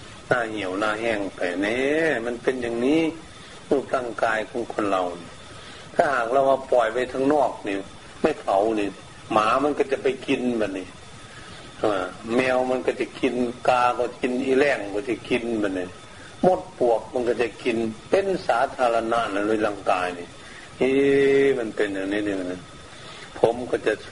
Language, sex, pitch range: Thai, male, 105-135 Hz